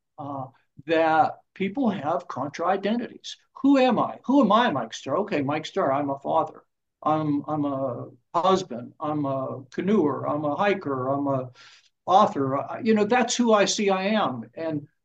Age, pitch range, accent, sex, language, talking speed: 60-79, 145-195 Hz, American, male, English, 170 wpm